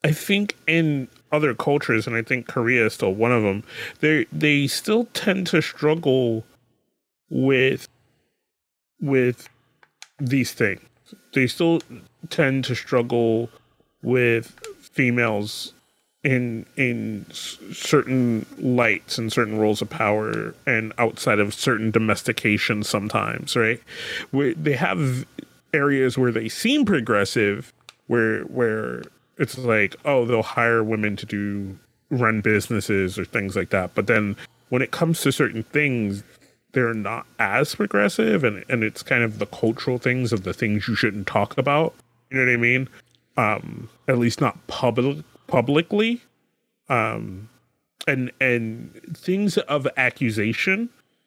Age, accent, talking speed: 30-49, American, 135 wpm